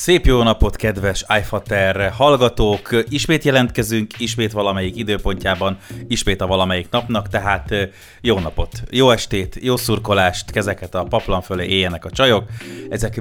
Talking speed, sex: 135 wpm, male